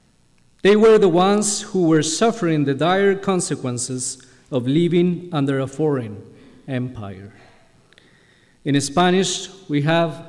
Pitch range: 140-185 Hz